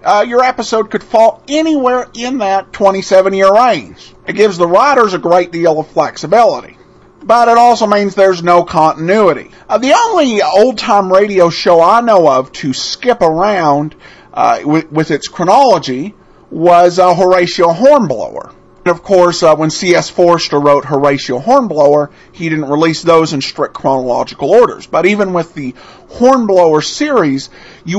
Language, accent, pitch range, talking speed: English, American, 155-220 Hz, 155 wpm